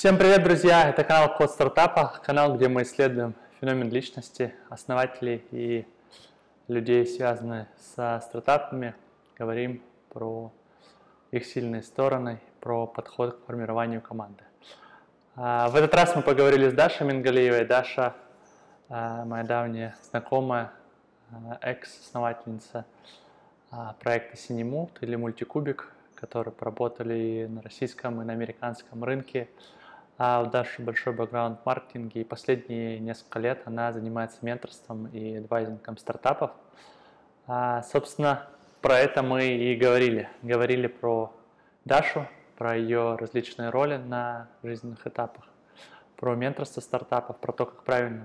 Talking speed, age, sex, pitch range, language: 120 wpm, 20-39, male, 115-125 Hz, Russian